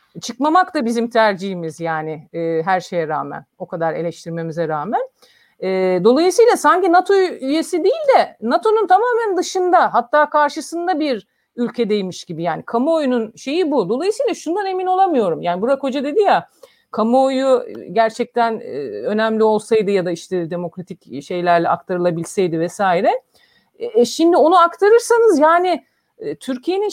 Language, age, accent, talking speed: Turkish, 50-69, native, 130 wpm